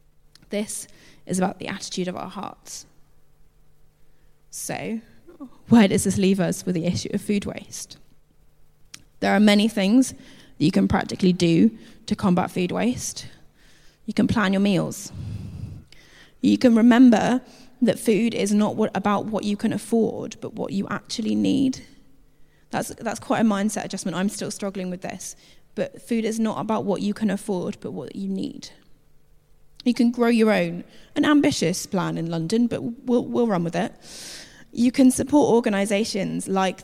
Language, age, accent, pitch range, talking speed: English, 10-29, British, 190-230 Hz, 165 wpm